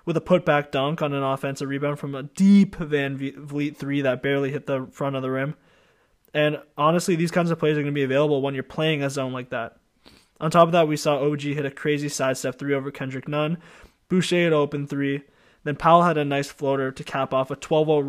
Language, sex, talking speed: English, male, 230 wpm